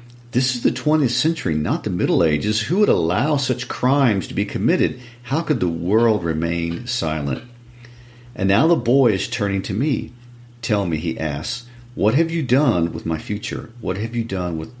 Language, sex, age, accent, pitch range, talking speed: English, male, 50-69, American, 80-120 Hz, 190 wpm